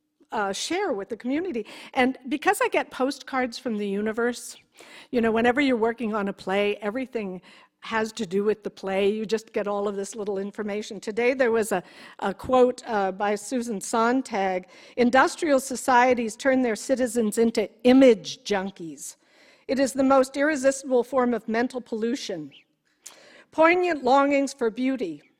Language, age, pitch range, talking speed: English, 50-69, 220-265 Hz, 160 wpm